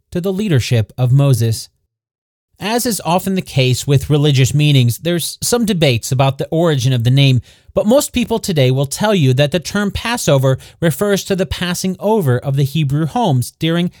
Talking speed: 185 wpm